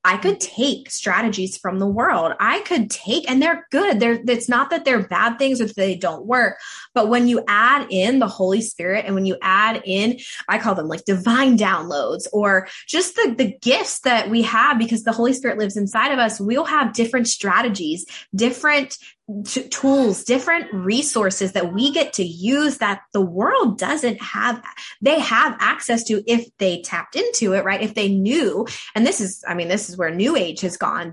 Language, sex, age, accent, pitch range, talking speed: English, female, 20-39, American, 190-245 Hz, 200 wpm